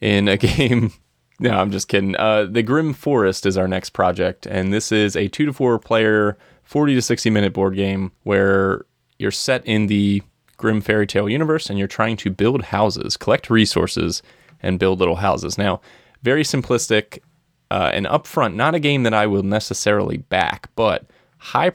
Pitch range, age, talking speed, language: 95-115 Hz, 30-49, 180 wpm, English